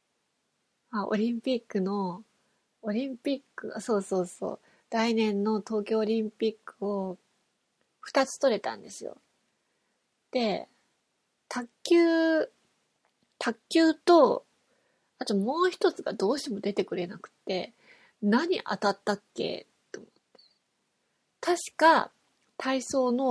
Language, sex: Japanese, female